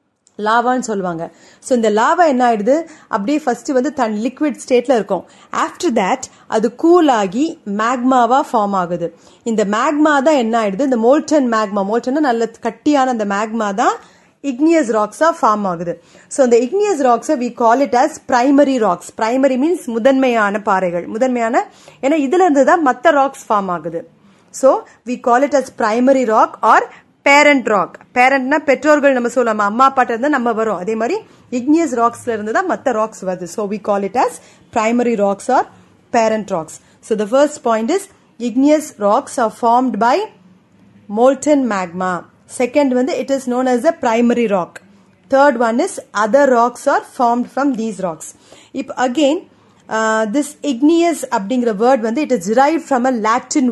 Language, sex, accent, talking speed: Tamil, female, native, 105 wpm